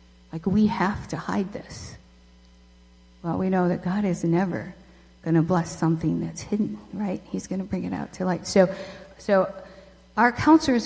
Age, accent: 50-69, American